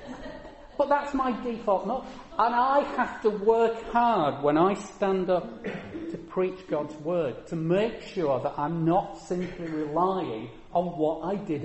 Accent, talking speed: British, 150 wpm